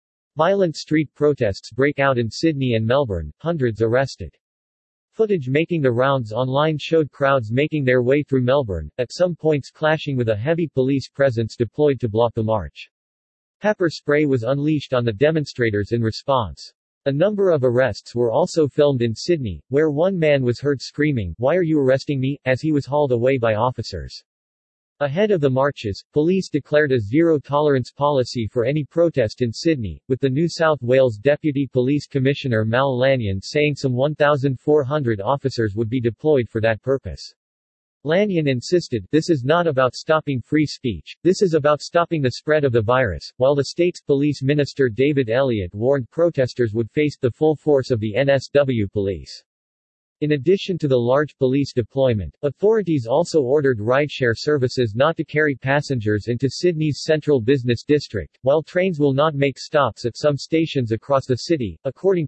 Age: 40-59